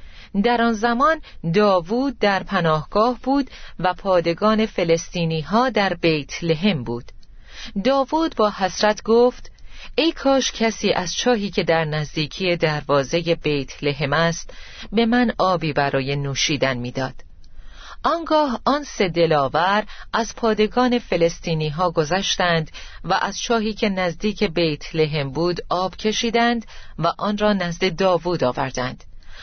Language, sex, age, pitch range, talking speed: Persian, female, 40-59, 160-220 Hz, 125 wpm